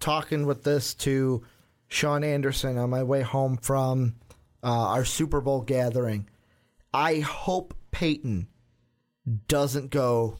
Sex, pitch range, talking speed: male, 120-150 Hz, 120 wpm